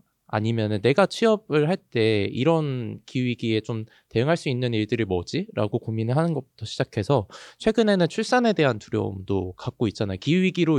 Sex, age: male, 20-39